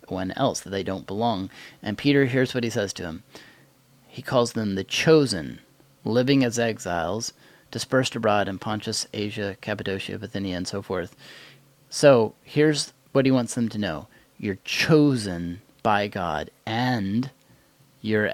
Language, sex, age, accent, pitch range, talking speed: English, male, 30-49, American, 105-145 Hz, 150 wpm